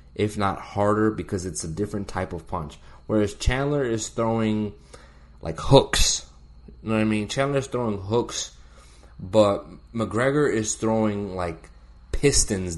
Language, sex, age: English, male, 20-39